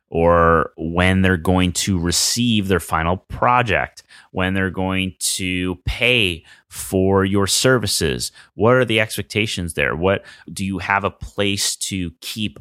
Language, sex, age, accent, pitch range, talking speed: English, male, 30-49, American, 80-105 Hz, 145 wpm